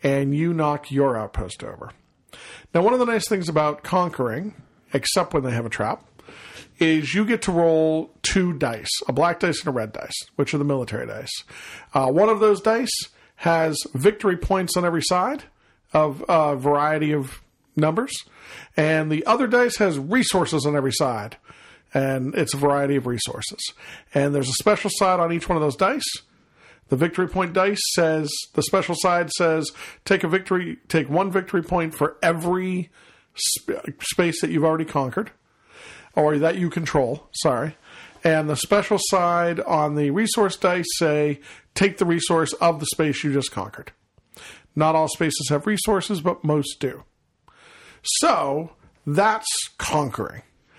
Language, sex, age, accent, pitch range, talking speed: English, male, 50-69, American, 145-185 Hz, 165 wpm